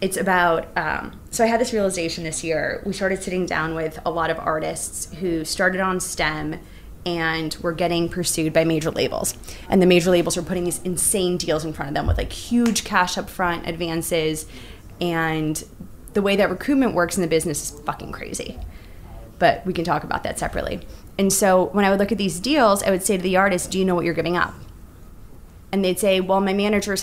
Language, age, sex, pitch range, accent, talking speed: English, 20-39, female, 165-195 Hz, American, 215 wpm